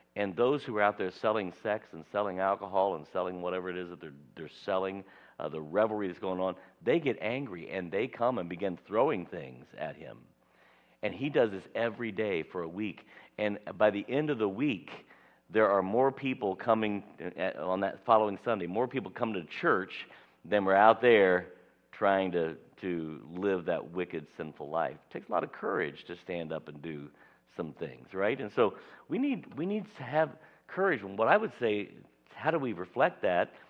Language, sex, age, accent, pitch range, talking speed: English, male, 50-69, American, 85-115 Hz, 200 wpm